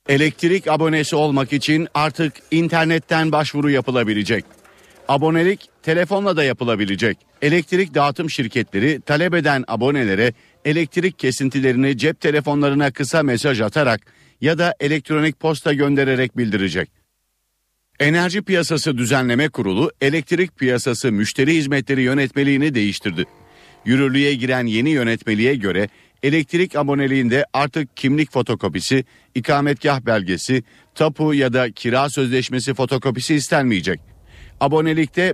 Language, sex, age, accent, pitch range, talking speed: Turkish, male, 50-69, native, 125-155 Hz, 105 wpm